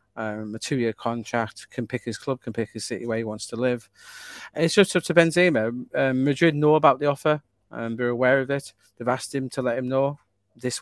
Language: English